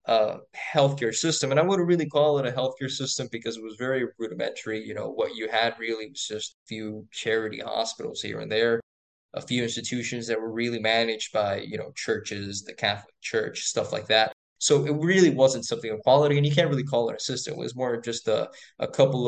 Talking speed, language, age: 220 wpm, English, 20-39